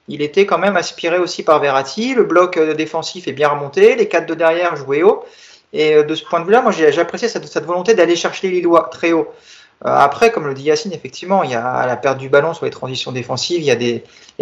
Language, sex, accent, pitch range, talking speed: French, male, French, 135-180 Hz, 245 wpm